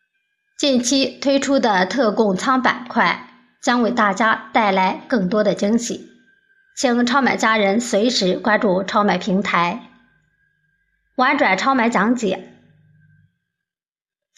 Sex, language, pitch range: male, Chinese, 205-260 Hz